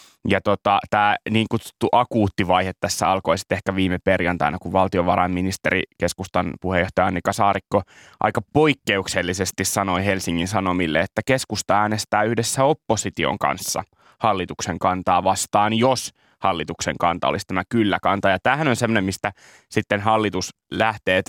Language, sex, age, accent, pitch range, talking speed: Finnish, male, 20-39, native, 95-110 Hz, 130 wpm